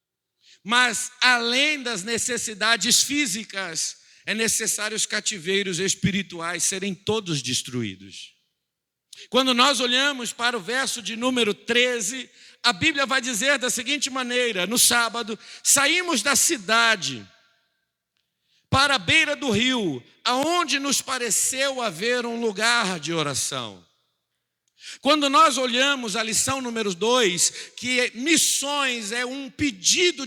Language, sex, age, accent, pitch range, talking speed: Portuguese, male, 50-69, Brazilian, 220-270 Hz, 115 wpm